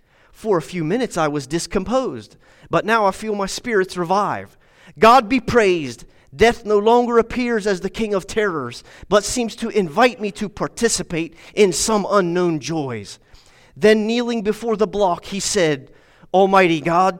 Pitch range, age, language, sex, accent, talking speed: 165-225 Hz, 30-49, English, male, American, 160 wpm